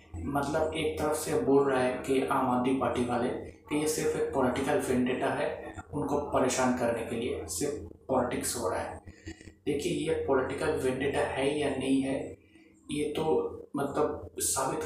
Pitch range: 135-150 Hz